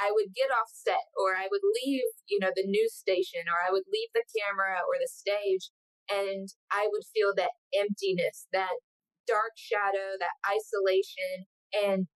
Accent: American